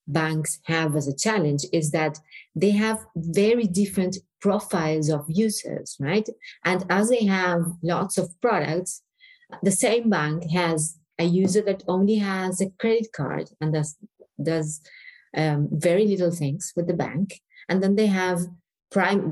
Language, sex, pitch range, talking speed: English, female, 165-205 Hz, 150 wpm